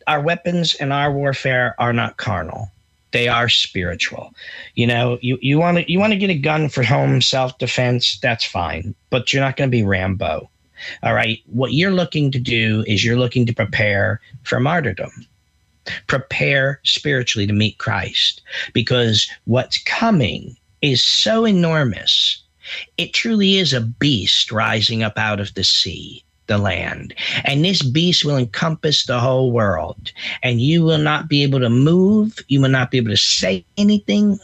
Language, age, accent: English, 50-69, American